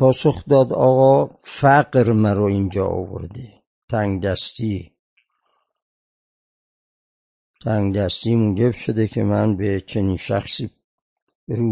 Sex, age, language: male, 50-69, Persian